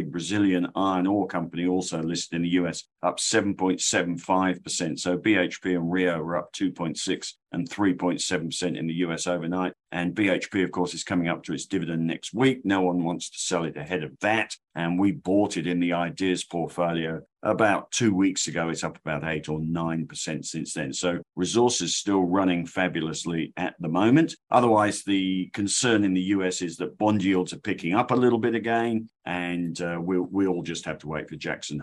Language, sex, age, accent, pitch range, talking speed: English, male, 50-69, British, 85-95 Hz, 190 wpm